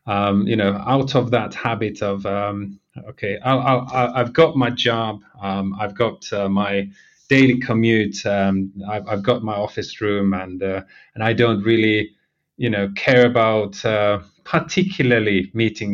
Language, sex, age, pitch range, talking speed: English, male, 30-49, 100-120 Hz, 165 wpm